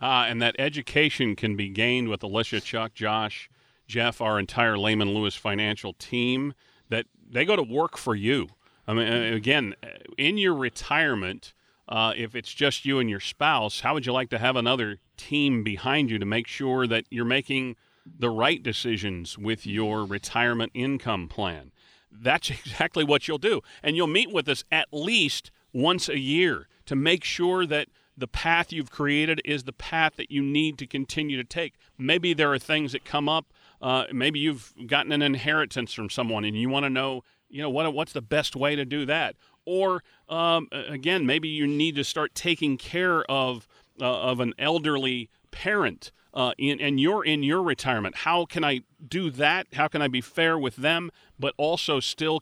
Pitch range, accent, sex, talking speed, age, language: 115-150 Hz, American, male, 190 wpm, 40-59, English